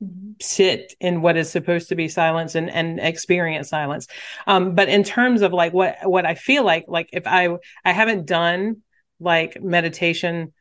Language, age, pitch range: English, 40-59, 160-185 Hz